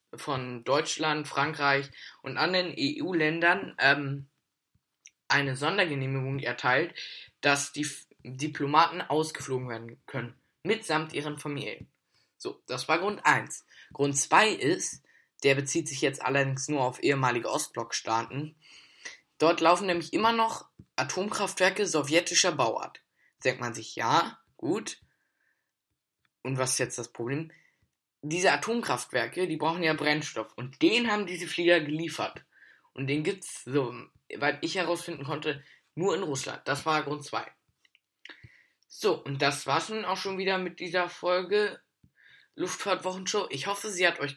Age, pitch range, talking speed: 10-29, 140-175 Hz, 135 wpm